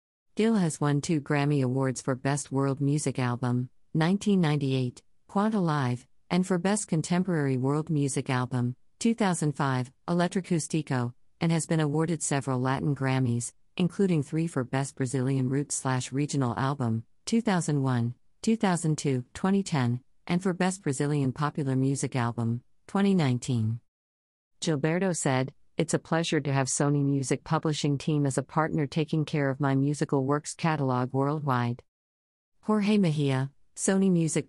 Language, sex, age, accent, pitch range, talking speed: English, female, 50-69, American, 130-160 Hz, 130 wpm